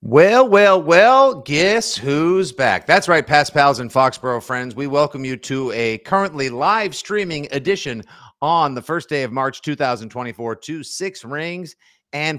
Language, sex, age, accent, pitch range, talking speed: English, male, 50-69, American, 115-170 Hz, 160 wpm